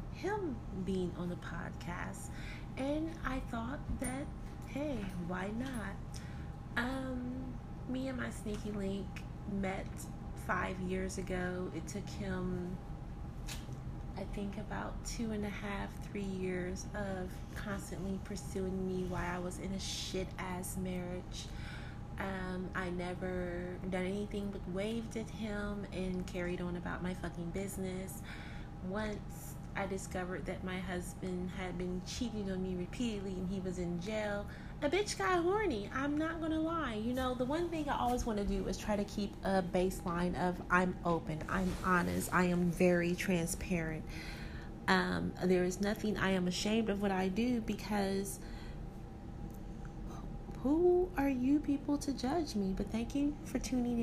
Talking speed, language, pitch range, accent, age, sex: 150 wpm, English, 180-220 Hz, American, 30-49, female